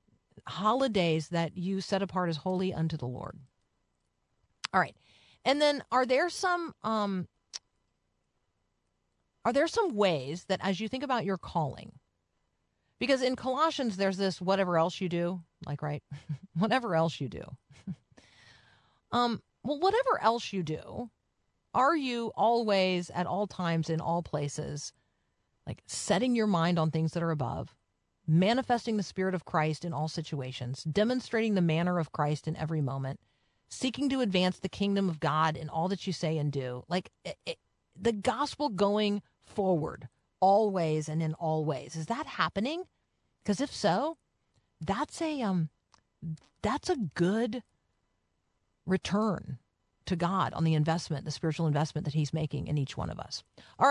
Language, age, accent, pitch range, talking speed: English, 40-59, American, 150-215 Hz, 155 wpm